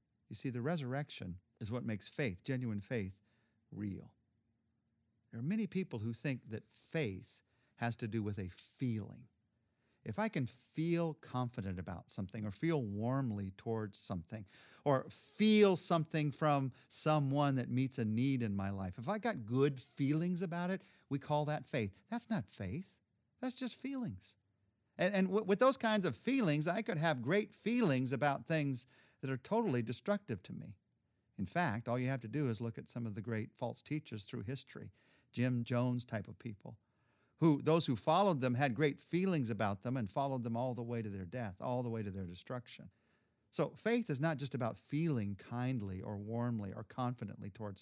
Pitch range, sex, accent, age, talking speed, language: 110-150 Hz, male, American, 50-69, 185 wpm, English